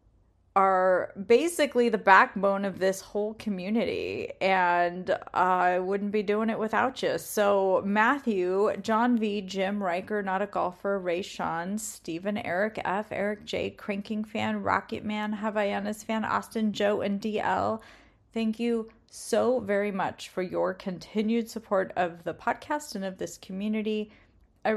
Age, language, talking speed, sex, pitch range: 30-49, English, 140 wpm, female, 185-230 Hz